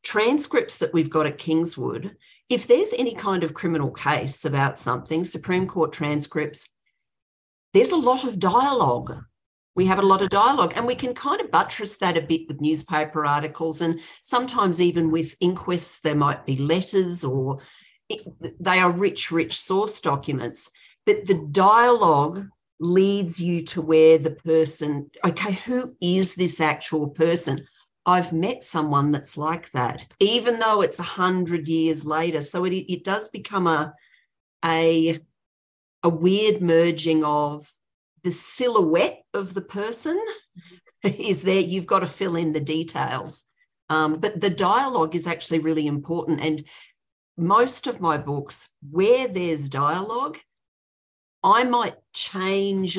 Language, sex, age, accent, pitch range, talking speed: English, female, 50-69, Australian, 155-195 Hz, 145 wpm